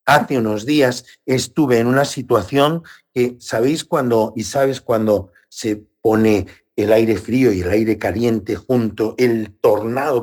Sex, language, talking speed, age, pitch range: male, Spanish, 145 wpm, 60-79, 95-140 Hz